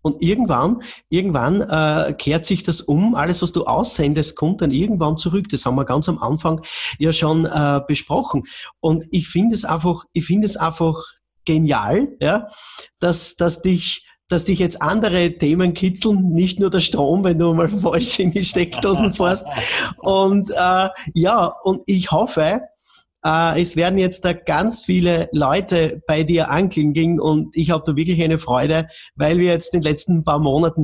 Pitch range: 150-185 Hz